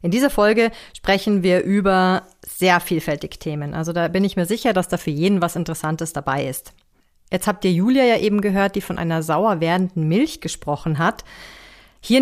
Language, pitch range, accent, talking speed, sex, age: German, 165-215 Hz, German, 190 wpm, female, 30-49